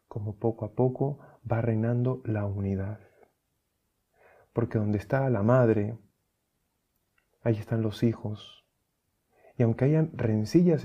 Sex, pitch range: male, 105-120 Hz